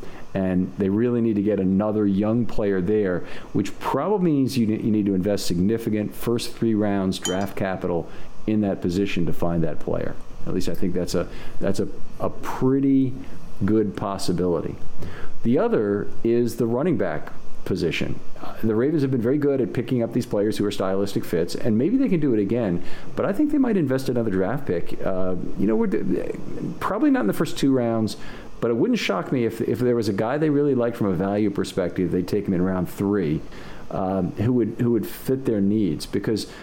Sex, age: male, 50-69